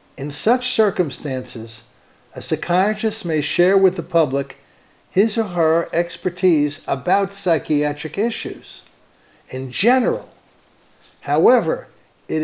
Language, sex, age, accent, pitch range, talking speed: English, male, 60-79, American, 135-175 Hz, 100 wpm